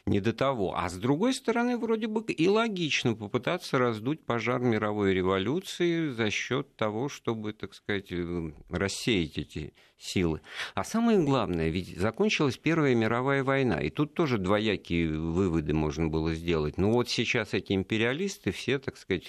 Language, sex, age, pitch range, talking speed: Russian, male, 50-69, 85-115 Hz, 150 wpm